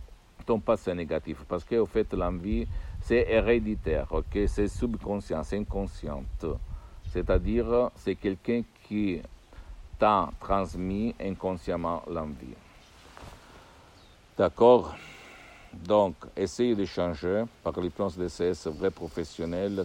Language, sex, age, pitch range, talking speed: Italian, male, 60-79, 80-100 Hz, 100 wpm